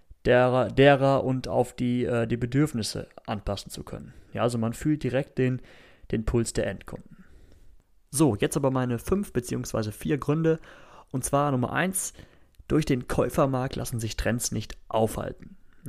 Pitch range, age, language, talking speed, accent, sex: 110-135 Hz, 30-49, German, 145 wpm, German, male